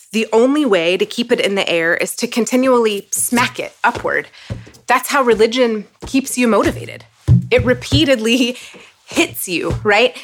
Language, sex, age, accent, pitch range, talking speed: English, female, 30-49, American, 190-250 Hz, 150 wpm